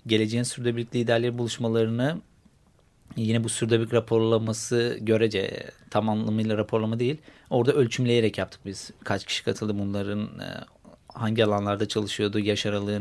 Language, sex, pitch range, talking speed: Turkish, male, 105-115 Hz, 115 wpm